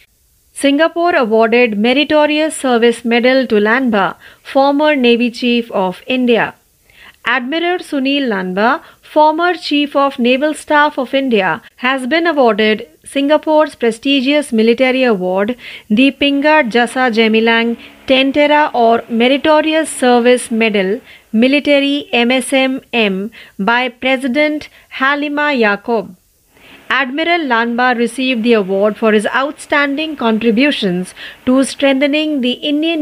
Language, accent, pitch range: Marathi, native, 230-285 Hz